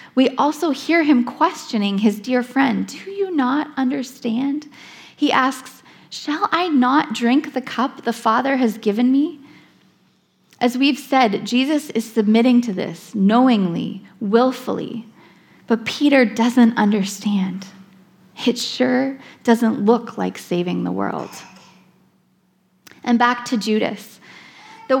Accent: American